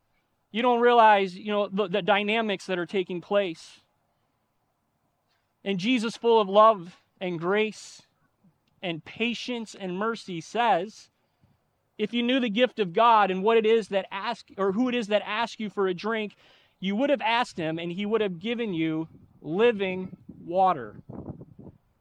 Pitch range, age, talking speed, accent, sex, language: 185-235 Hz, 30-49, 165 wpm, American, male, English